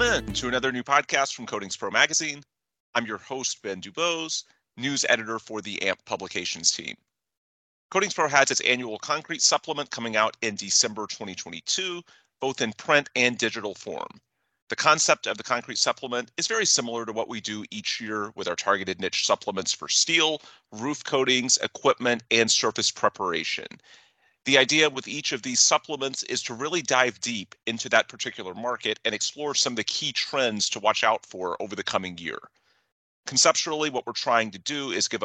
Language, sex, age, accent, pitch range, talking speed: English, male, 30-49, American, 110-145 Hz, 180 wpm